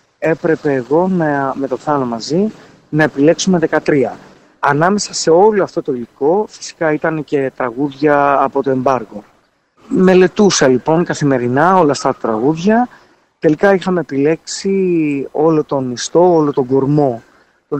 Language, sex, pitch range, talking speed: Greek, male, 140-185 Hz, 135 wpm